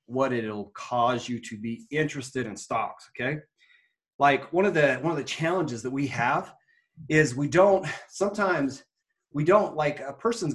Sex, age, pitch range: male, 30-49, 115-135 Hz